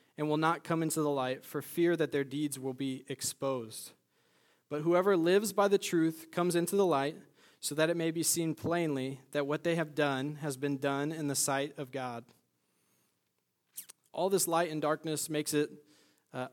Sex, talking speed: male, 190 wpm